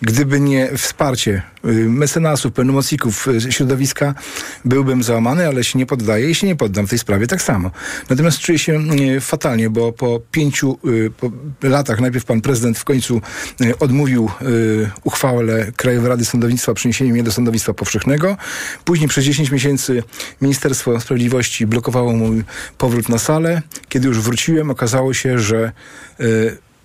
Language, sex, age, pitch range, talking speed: Polish, male, 40-59, 110-135 Hz, 155 wpm